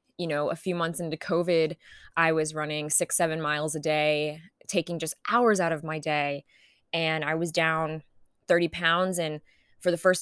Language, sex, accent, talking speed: English, female, American, 190 wpm